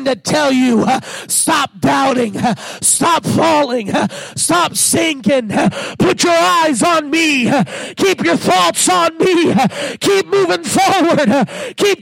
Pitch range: 195-280 Hz